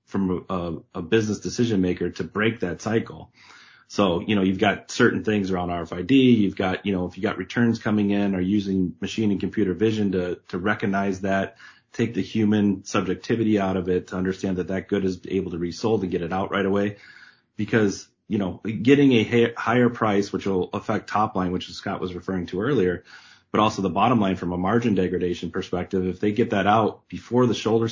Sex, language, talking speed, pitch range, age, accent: male, English, 205 wpm, 90-110 Hz, 30-49, American